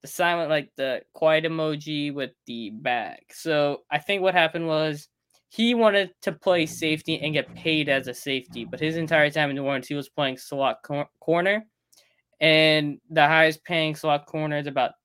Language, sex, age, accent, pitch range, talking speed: English, male, 10-29, American, 135-155 Hz, 185 wpm